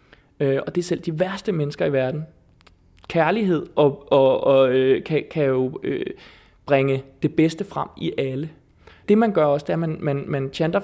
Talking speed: 200 wpm